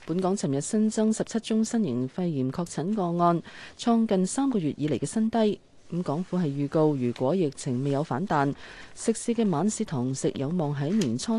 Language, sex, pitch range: Chinese, female, 135-200 Hz